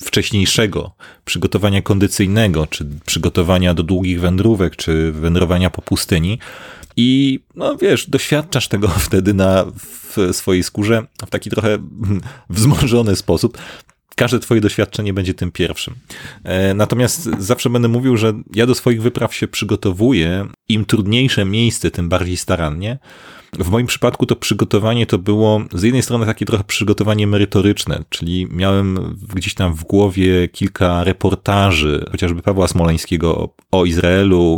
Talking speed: 135 wpm